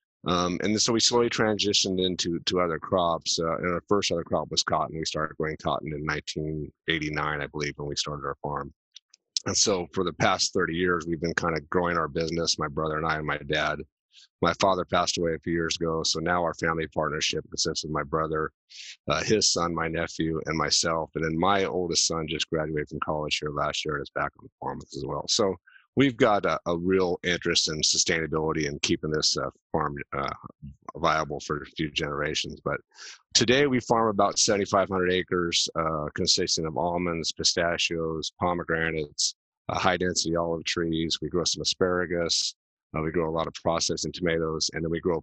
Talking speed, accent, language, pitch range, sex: 195 wpm, American, English, 75-90 Hz, male